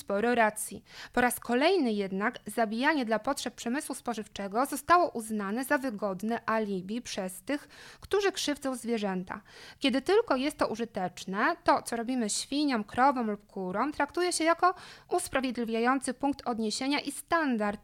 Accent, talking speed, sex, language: native, 140 wpm, female, Polish